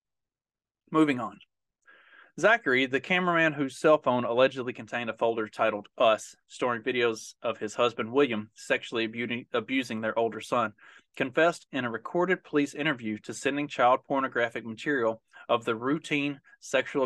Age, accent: 30-49, American